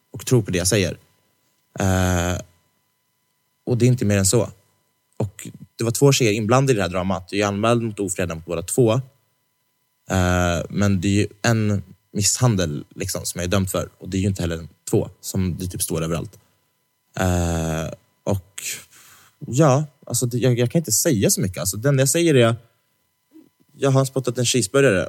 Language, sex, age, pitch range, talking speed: Swedish, male, 20-39, 95-125 Hz, 190 wpm